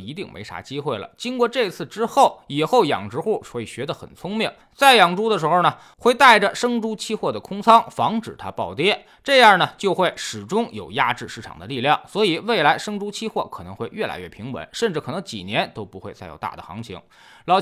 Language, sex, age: Chinese, male, 20-39